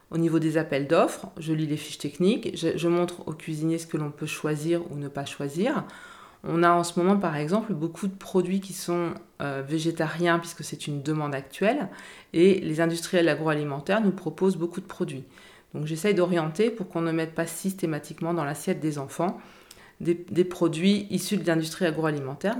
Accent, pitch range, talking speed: French, 160-185 Hz, 190 wpm